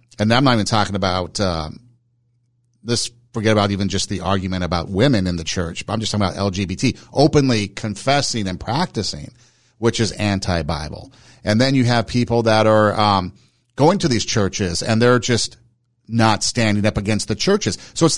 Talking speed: 180 wpm